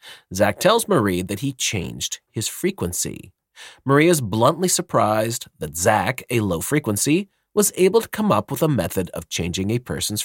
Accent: American